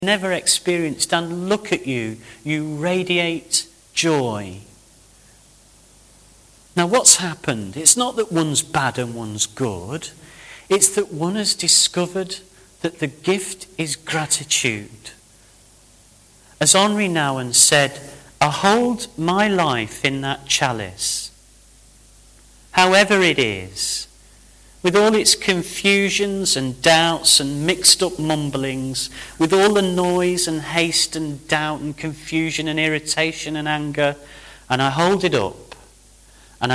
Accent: British